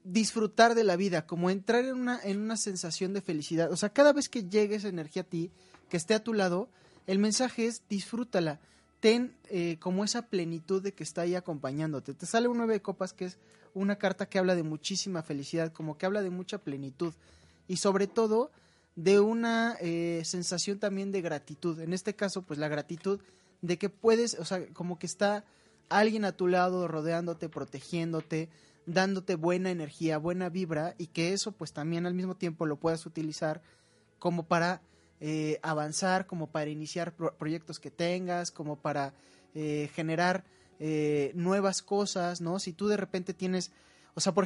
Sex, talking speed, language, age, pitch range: male, 180 wpm, Spanish, 20-39, 165-200 Hz